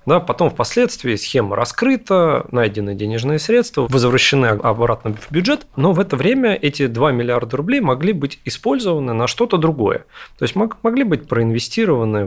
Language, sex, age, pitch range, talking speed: Russian, male, 30-49, 115-160 Hz, 145 wpm